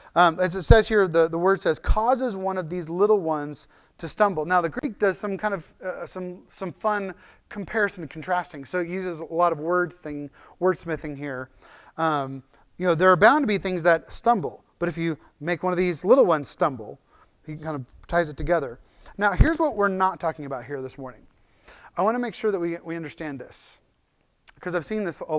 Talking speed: 220 wpm